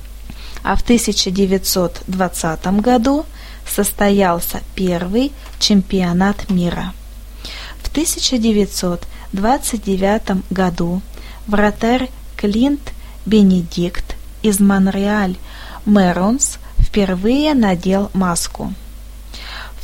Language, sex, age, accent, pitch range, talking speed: Russian, female, 20-39, native, 190-240 Hz, 65 wpm